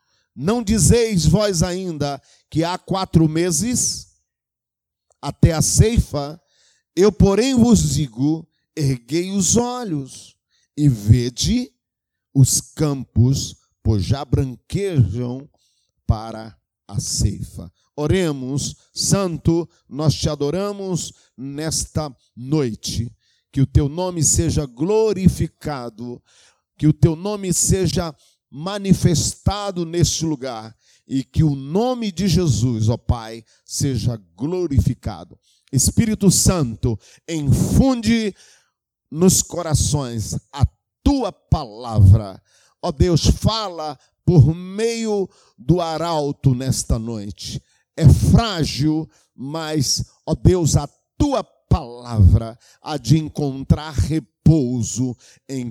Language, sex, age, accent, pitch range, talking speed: Portuguese, male, 50-69, Brazilian, 120-175 Hz, 95 wpm